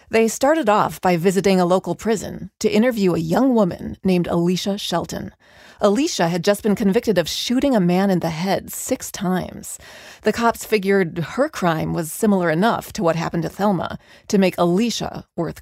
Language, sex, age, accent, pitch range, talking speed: English, female, 30-49, American, 175-225 Hz, 180 wpm